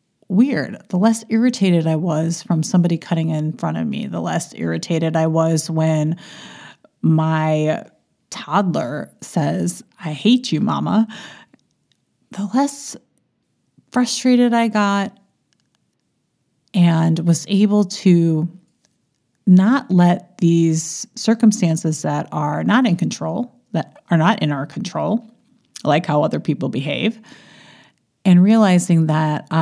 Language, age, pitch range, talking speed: English, 30-49, 160-215 Hz, 120 wpm